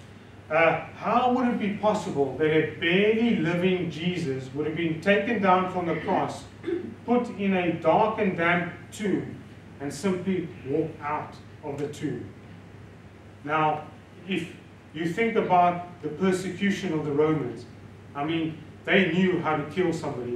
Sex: male